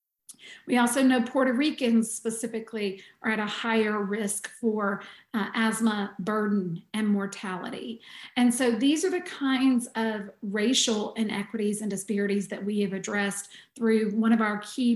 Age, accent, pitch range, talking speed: 40-59, American, 215-245 Hz, 150 wpm